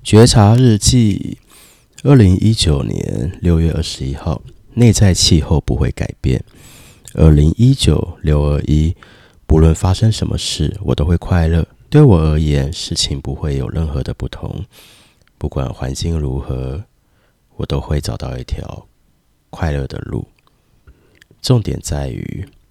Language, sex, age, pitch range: Chinese, male, 30-49, 75-95 Hz